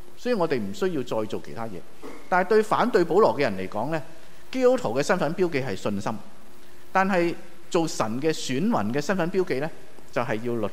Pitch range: 120-170 Hz